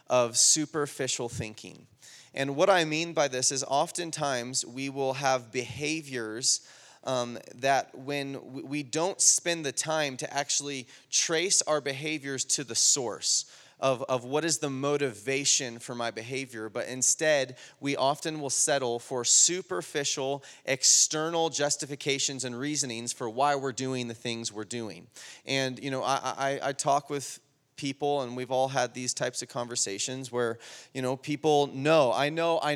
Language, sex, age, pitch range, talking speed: English, male, 30-49, 125-145 Hz, 155 wpm